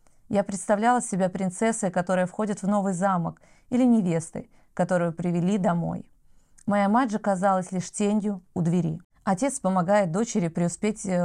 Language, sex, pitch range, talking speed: Russian, female, 180-210 Hz, 140 wpm